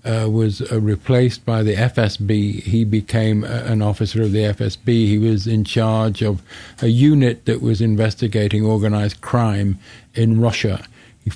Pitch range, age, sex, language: 110-125 Hz, 50-69, male, English